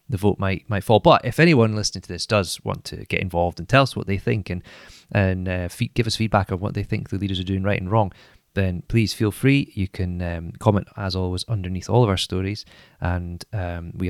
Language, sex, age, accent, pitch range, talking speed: English, male, 30-49, British, 90-110 Hz, 245 wpm